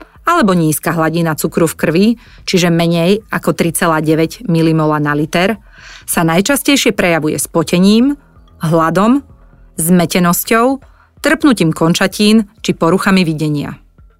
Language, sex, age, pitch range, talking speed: Slovak, female, 30-49, 165-205 Hz, 100 wpm